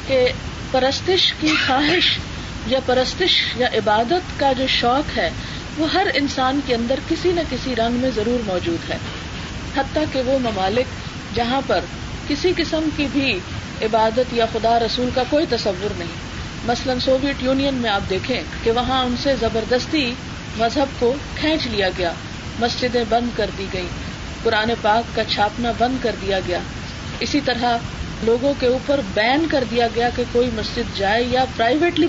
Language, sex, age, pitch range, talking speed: Urdu, female, 40-59, 230-280 Hz, 165 wpm